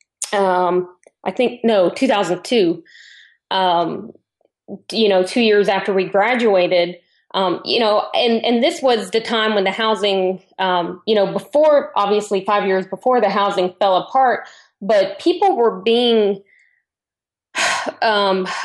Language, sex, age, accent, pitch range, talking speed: English, female, 20-39, American, 190-235 Hz, 135 wpm